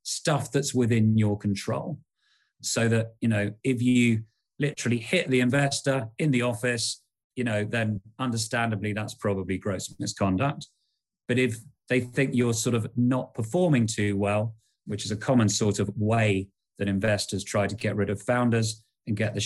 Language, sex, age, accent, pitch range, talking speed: English, male, 30-49, British, 100-125 Hz, 170 wpm